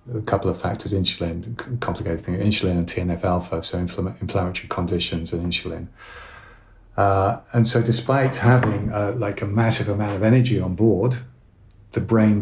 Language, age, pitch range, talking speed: English, 40-59, 90-110 Hz, 155 wpm